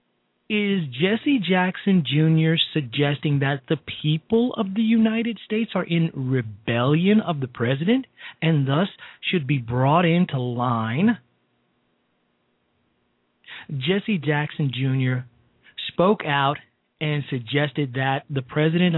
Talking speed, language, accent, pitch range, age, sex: 110 wpm, English, American, 105-155 Hz, 40-59, male